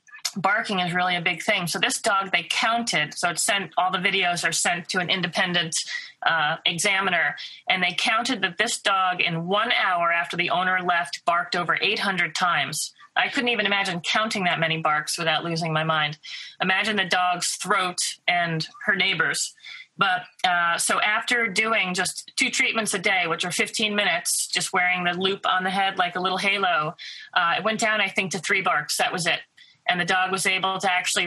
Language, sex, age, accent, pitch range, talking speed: English, female, 30-49, American, 175-215 Hz, 200 wpm